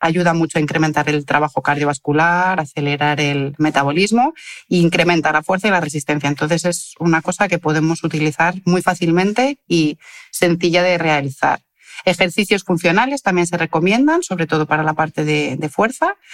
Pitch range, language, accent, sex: 155-185 Hz, Spanish, Spanish, female